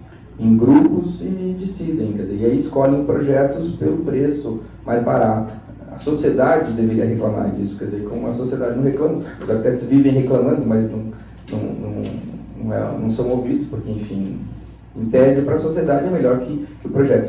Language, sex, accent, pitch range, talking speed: Portuguese, male, Brazilian, 110-140 Hz, 165 wpm